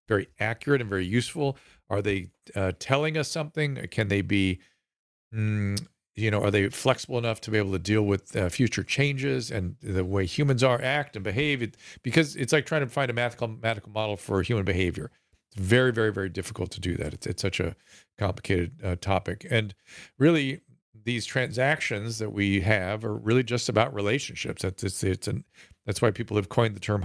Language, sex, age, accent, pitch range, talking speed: English, male, 50-69, American, 95-120 Hz, 195 wpm